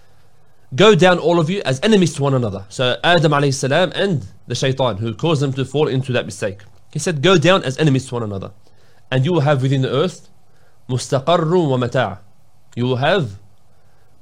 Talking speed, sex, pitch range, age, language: 185 wpm, male, 115-155 Hz, 30-49, English